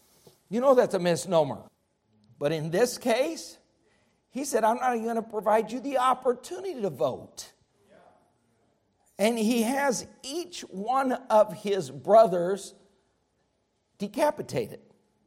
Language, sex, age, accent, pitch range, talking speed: English, male, 50-69, American, 160-220 Hz, 120 wpm